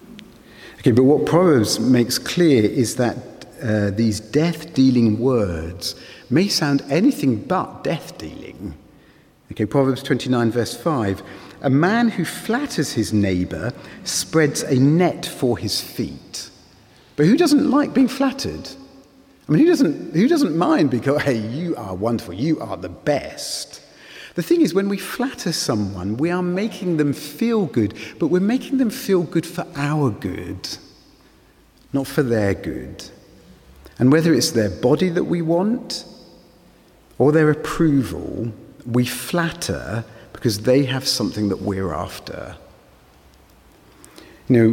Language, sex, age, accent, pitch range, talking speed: English, male, 50-69, British, 110-160 Hz, 140 wpm